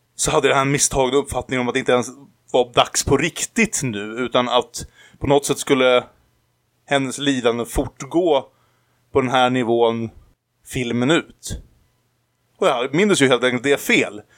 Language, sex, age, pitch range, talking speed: Swedish, male, 20-39, 115-135 Hz, 165 wpm